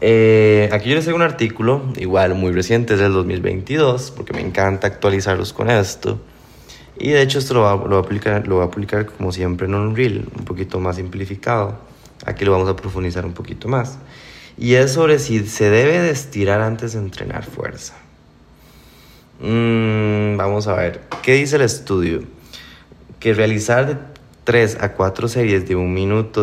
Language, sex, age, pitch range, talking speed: Spanish, male, 20-39, 95-120 Hz, 180 wpm